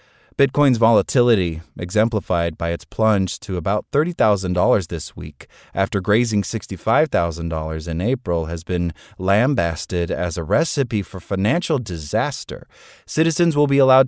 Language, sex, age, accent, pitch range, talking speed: English, male, 30-49, American, 90-130 Hz, 125 wpm